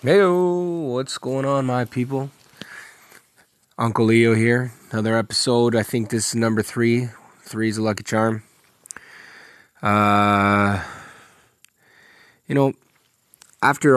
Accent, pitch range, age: American, 95-115 Hz, 20-39